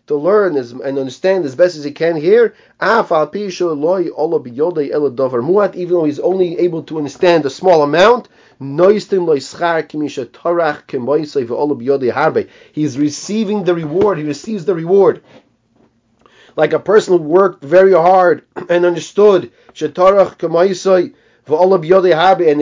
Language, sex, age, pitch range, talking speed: English, male, 30-49, 145-185 Hz, 100 wpm